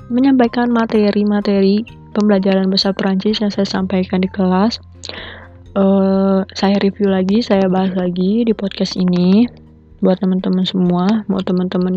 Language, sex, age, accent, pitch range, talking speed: Indonesian, female, 20-39, native, 175-200 Hz, 125 wpm